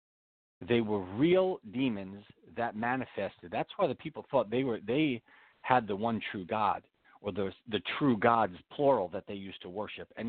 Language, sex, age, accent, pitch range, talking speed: English, male, 40-59, American, 95-130 Hz, 180 wpm